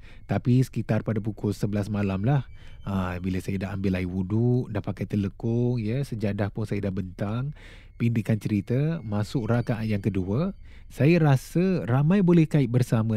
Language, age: Malay, 30-49